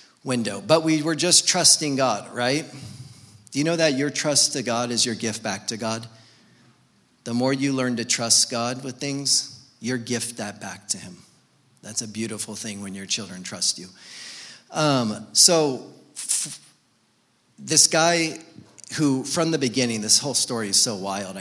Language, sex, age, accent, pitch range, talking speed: English, male, 40-59, American, 110-135 Hz, 170 wpm